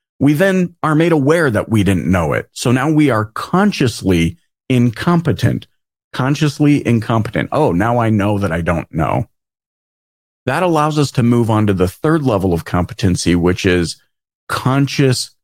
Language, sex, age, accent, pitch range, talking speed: English, male, 40-59, American, 95-130 Hz, 160 wpm